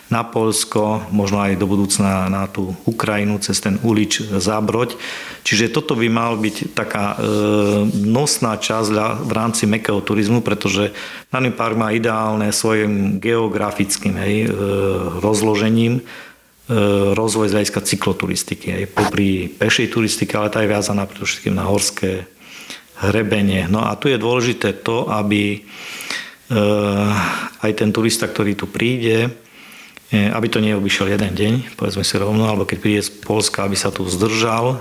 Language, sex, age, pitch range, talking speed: Slovak, male, 50-69, 100-115 Hz, 145 wpm